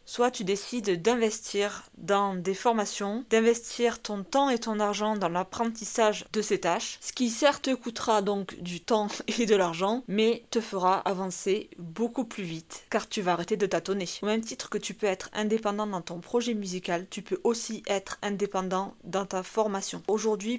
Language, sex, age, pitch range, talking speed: French, female, 20-39, 195-225 Hz, 180 wpm